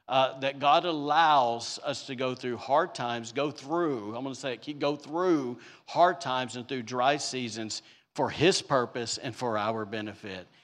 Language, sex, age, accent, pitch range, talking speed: English, male, 50-69, American, 120-165 Hz, 180 wpm